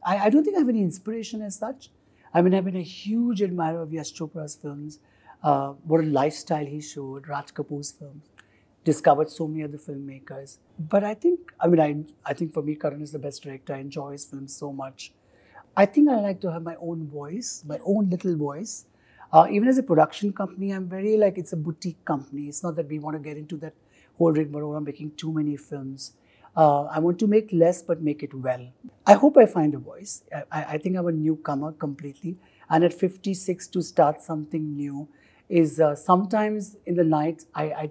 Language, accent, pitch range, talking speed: English, Indian, 145-180 Hz, 215 wpm